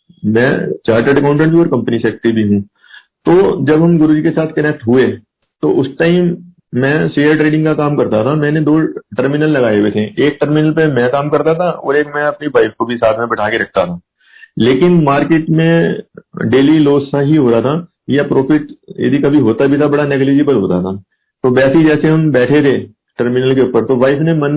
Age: 50-69